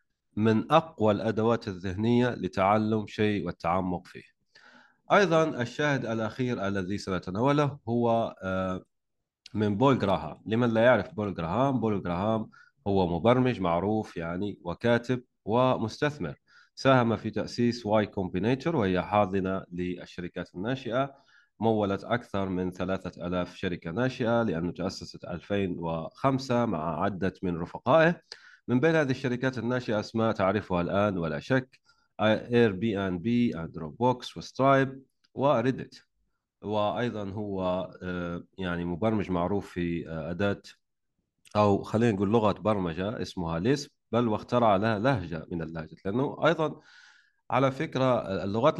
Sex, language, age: male, Arabic, 30-49